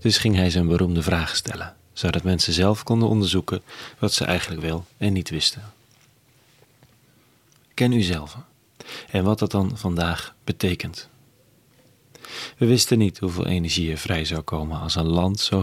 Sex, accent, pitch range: male, Dutch, 90-120 Hz